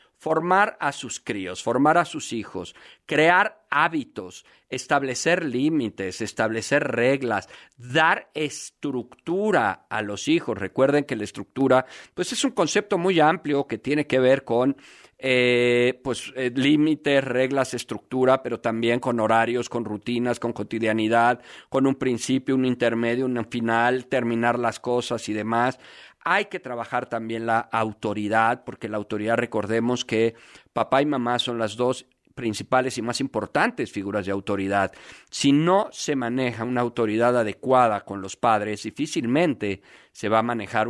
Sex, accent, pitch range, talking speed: male, Mexican, 115-130 Hz, 145 wpm